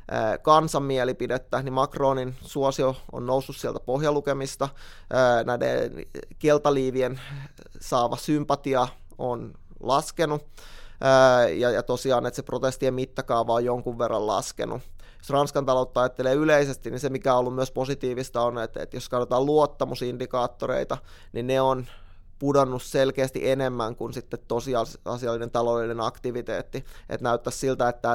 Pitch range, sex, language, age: 120-135 Hz, male, Finnish, 20-39